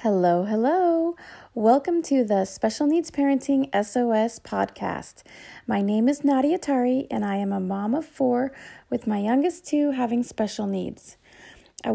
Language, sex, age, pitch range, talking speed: English, female, 30-49, 210-275 Hz, 150 wpm